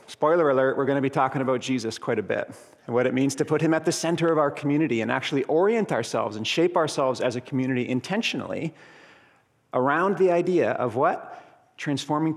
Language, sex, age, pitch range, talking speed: English, male, 40-59, 120-165 Hz, 205 wpm